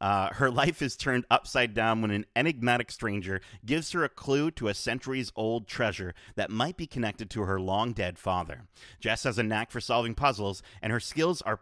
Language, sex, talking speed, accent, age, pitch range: English, male, 195 wpm, American, 30-49, 100-130 Hz